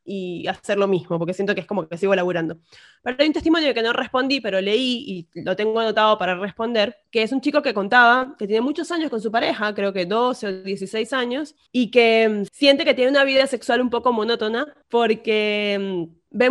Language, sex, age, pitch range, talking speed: Spanish, female, 20-39, 205-270 Hz, 220 wpm